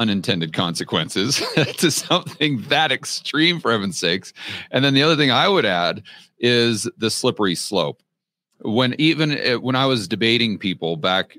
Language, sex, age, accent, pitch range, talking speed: English, male, 40-59, American, 100-130 Hz, 160 wpm